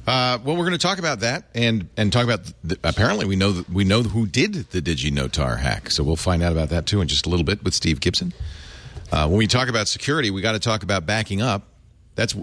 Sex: male